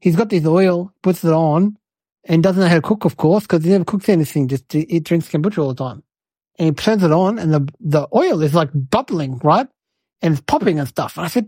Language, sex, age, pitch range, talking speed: English, male, 60-79, 160-230 Hz, 250 wpm